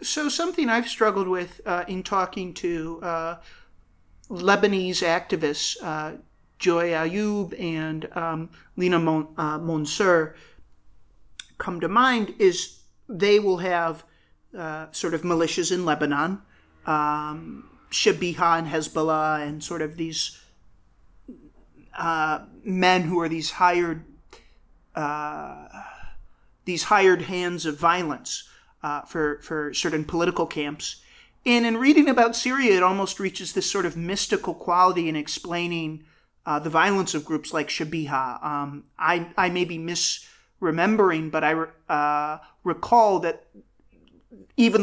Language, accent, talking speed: English, American, 125 wpm